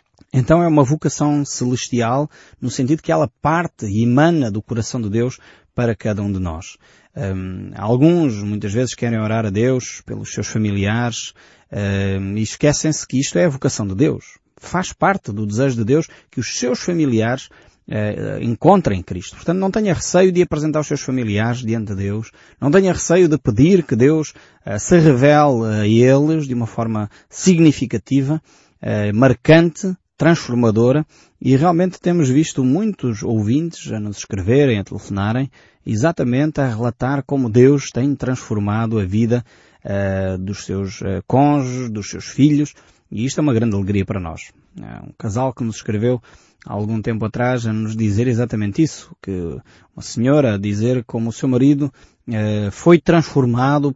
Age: 20-39